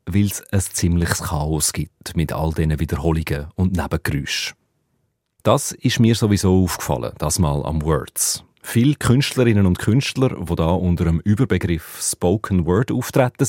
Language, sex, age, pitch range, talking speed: German, male, 40-59, 85-110 Hz, 140 wpm